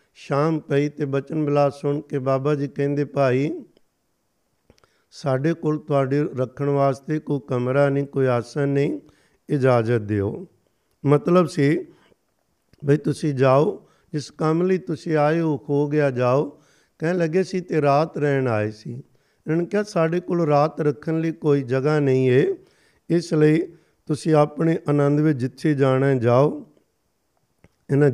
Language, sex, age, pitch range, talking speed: Punjabi, male, 50-69, 135-160 Hz, 140 wpm